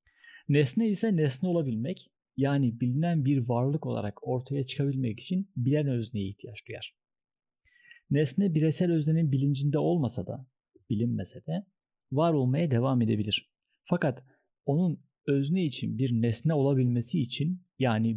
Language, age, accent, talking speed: Turkish, 50-69, native, 120 wpm